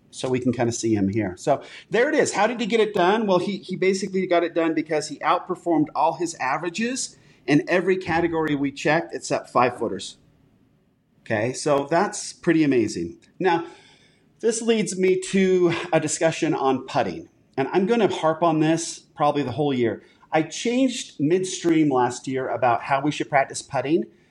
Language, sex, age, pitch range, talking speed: English, male, 40-59, 145-195 Hz, 185 wpm